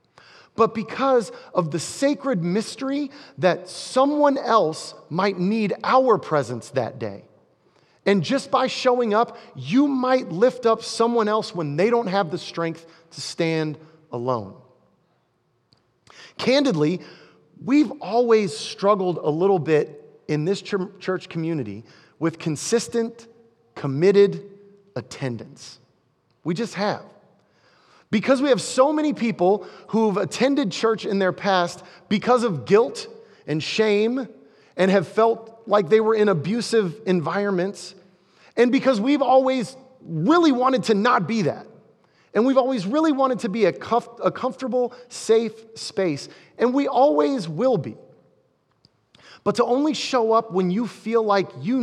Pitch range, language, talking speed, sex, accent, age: 185-250 Hz, English, 135 wpm, male, American, 30-49